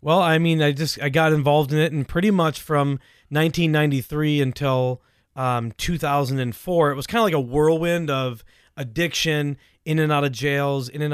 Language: English